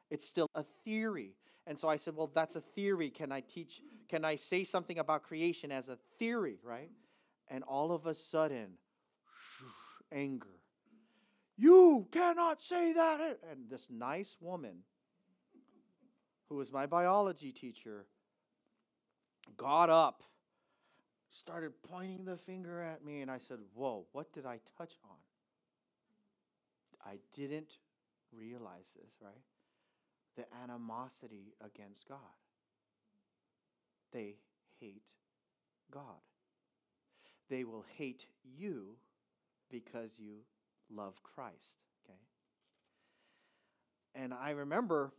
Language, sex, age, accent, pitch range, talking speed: English, male, 40-59, American, 130-185 Hz, 115 wpm